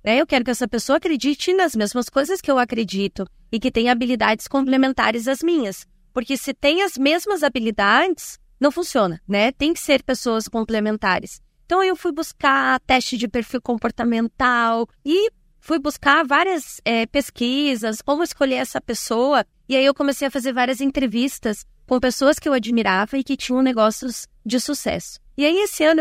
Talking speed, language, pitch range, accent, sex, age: 170 wpm, Portuguese, 225-290 Hz, Brazilian, female, 20-39